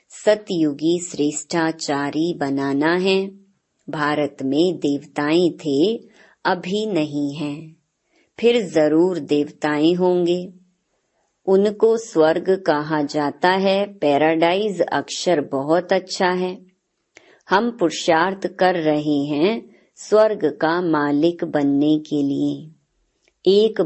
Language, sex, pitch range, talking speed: Hindi, male, 145-190 Hz, 95 wpm